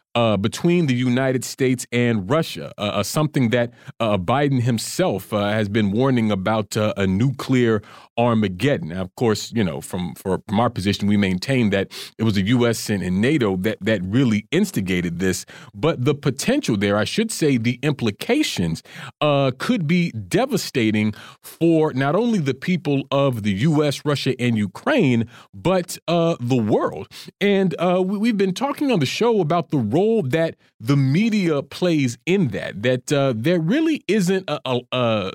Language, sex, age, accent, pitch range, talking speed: English, male, 40-59, American, 110-165 Hz, 175 wpm